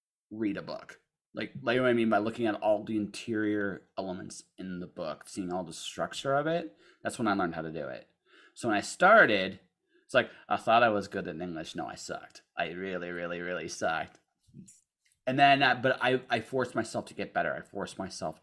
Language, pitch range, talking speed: English, 90-125 Hz, 220 wpm